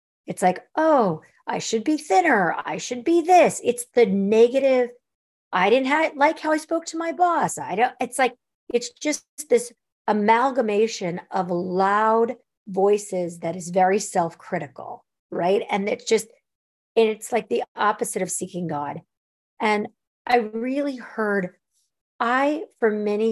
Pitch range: 175-235 Hz